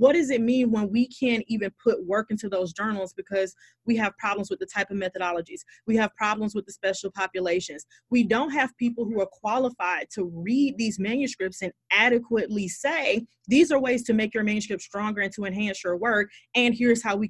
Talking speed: 210 wpm